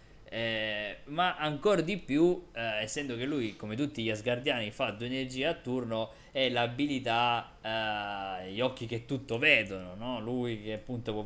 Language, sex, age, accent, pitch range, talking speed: Italian, male, 20-39, native, 110-150 Hz, 165 wpm